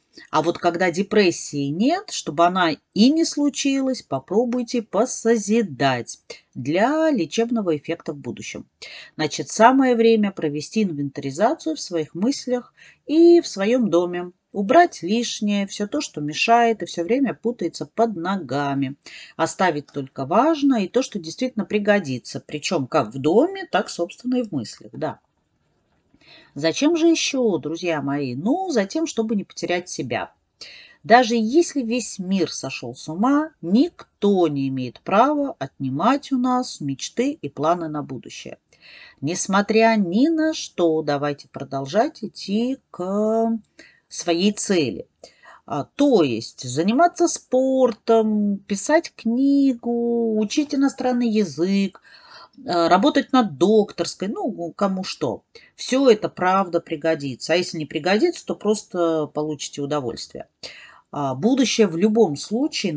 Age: 40-59